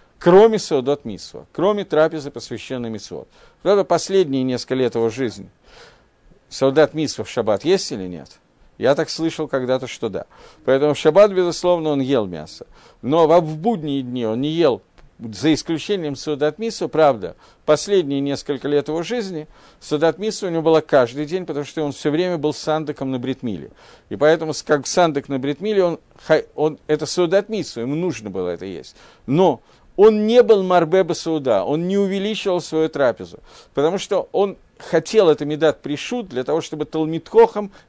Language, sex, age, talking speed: Russian, male, 50-69, 160 wpm